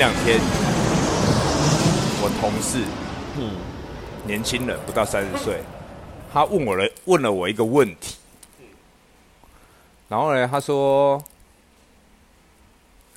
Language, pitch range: Chinese, 90-130 Hz